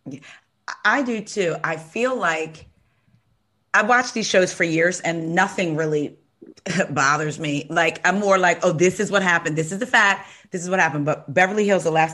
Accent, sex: American, female